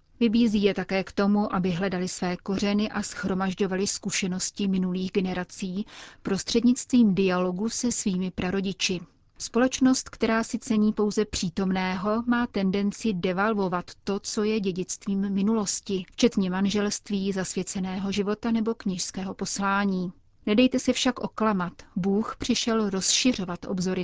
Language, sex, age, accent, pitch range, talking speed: Czech, female, 40-59, native, 190-220 Hz, 120 wpm